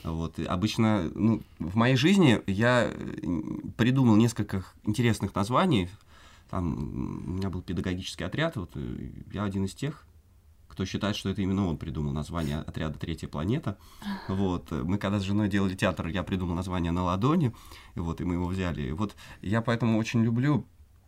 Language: Russian